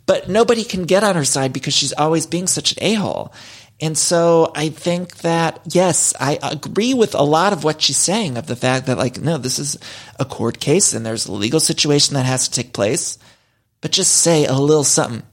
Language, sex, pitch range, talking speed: English, male, 130-175 Hz, 220 wpm